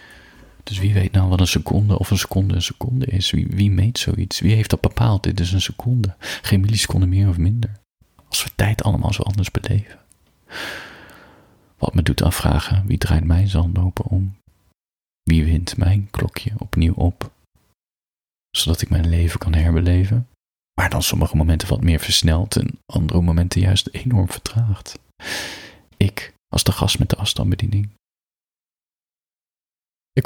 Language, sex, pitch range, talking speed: Dutch, male, 85-105 Hz, 155 wpm